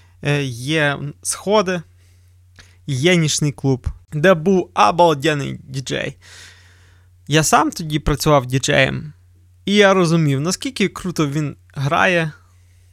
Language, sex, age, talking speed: Ukrainian, male, 20-39, 95 wpm